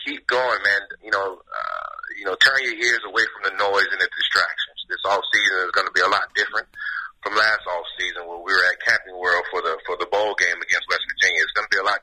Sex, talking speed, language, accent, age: male, 265 wpm, English, American, 30-49